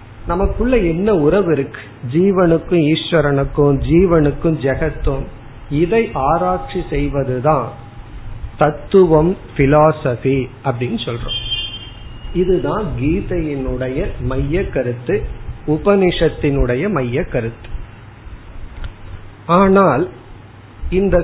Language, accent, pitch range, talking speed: Tamil, native, 115-175 Hz, 50 wpm